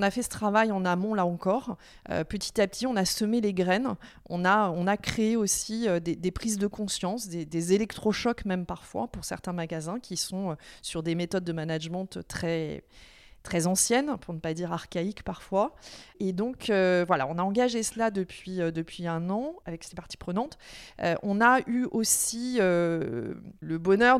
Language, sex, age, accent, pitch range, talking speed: French, female, 30-49, French, 175-215 Hz, 190 wpm